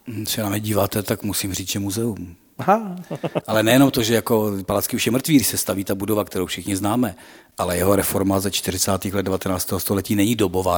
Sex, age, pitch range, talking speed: male, 40-59, 95-125 Hz, 190 wpm